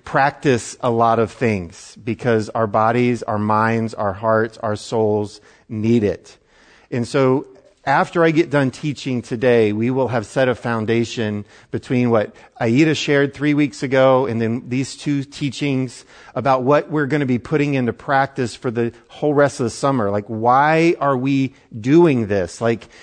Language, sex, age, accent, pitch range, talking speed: English, male, 40-59, American, 120-150 Hz, 170 wpm